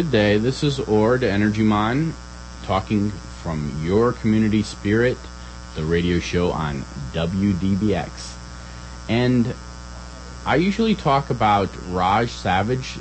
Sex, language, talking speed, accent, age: male, English, 110 wpm, American, 30-49